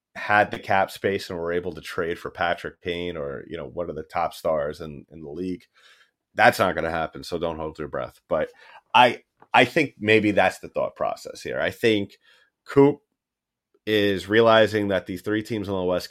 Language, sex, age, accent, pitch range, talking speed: English, male, 30-49, American, 85-105 Hz, 210 wpm